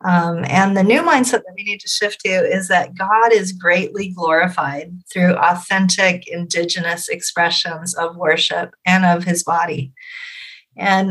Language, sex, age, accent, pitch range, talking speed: English, female, 40-59, American, 175-205 Hz, 150 wpm